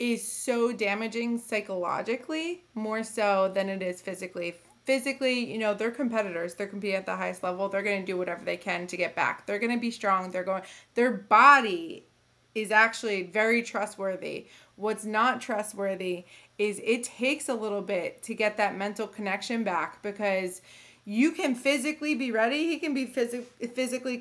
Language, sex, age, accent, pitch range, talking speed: English, female, 20-39, American, 200-245 Hz, 170 wpm